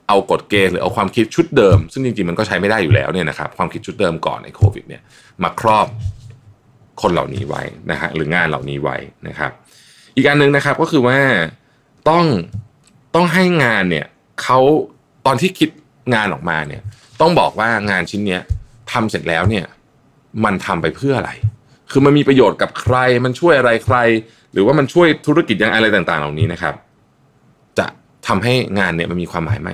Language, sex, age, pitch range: Thai, male, 20-39, 100-130 Hz